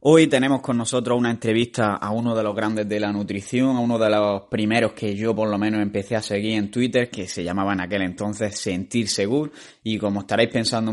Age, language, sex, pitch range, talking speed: 20-39, Spanish, male, 110-130 Hz, 225 wpm